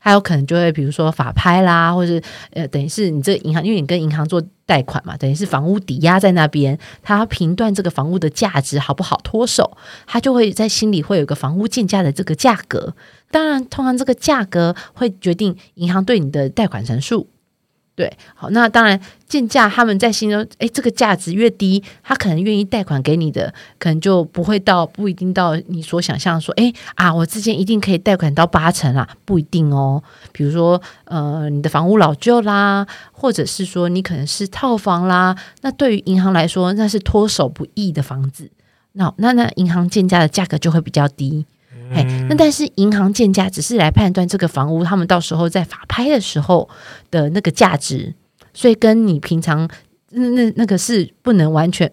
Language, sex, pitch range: Chinese, female, 155-210 Hz